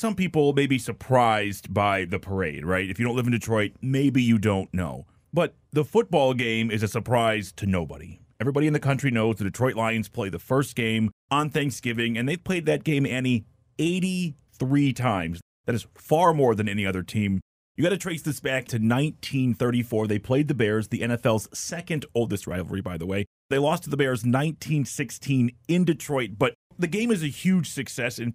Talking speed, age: 200 wpm, 30-49